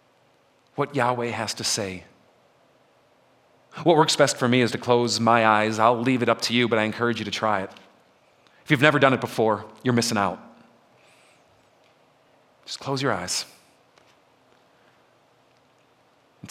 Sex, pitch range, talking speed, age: male, 95-125 Hz, 155 wpm, 40-59